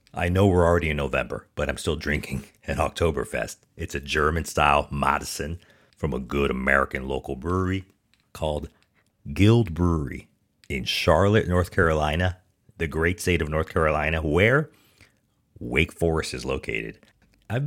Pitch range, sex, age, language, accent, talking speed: 70-100 Hz, male, 40-59, English, American, 140 wpm